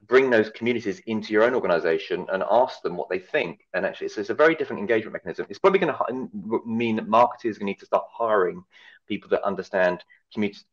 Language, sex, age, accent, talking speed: Italian, male, 30-49, British, 205 wpm